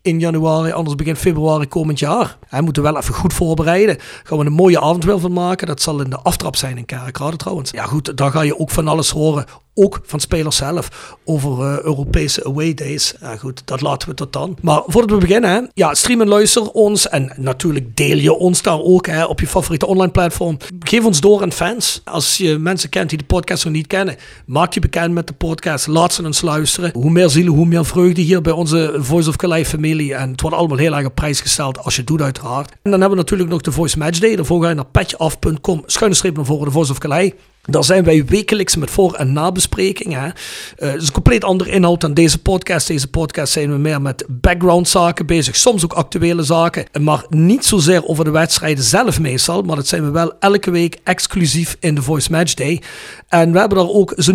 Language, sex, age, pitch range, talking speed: Dutch, male, 40-59, 150-180 Hz, 235 wpm